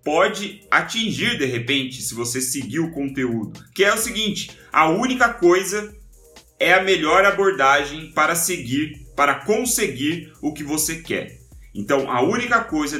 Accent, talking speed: Brazilian, 150 wpm